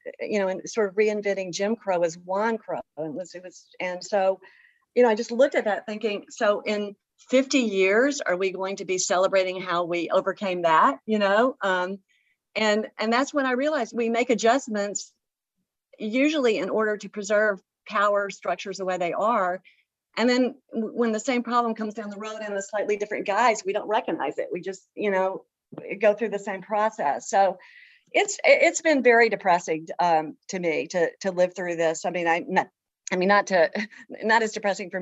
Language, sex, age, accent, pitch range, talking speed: English, female, 40-59, American, 185-230 Hz, 200 wpm